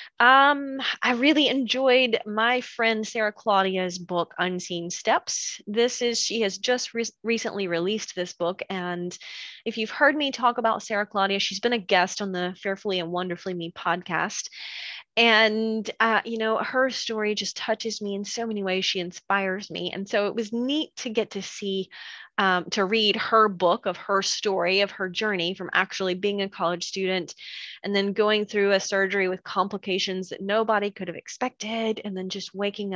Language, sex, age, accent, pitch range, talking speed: English, female, 20-39, American, 180-225 Hz, 180 wpm